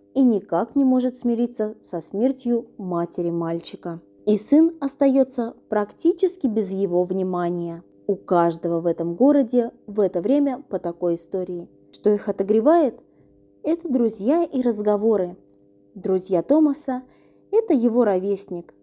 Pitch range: 175-270 Hz